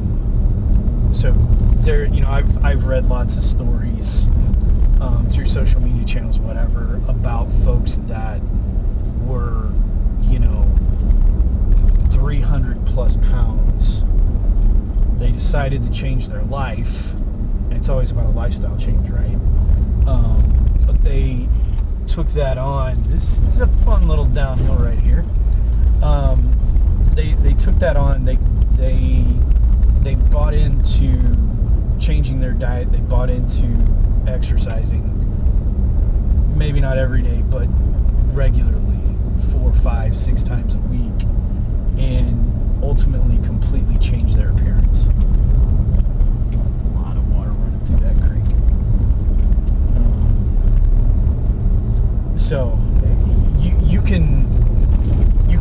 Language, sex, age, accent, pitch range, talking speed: English, male, 30-49, American, 65-95 Hz, 105 wpm